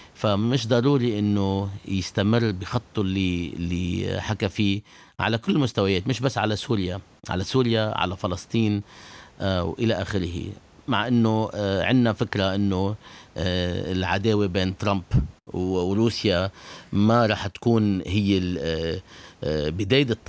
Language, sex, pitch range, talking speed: English, male, 90-110 Hz, 110 wpm